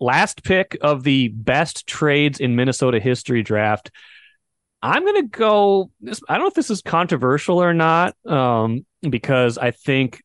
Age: 30-49